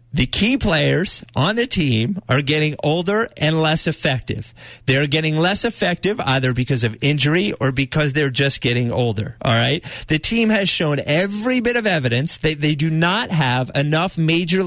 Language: English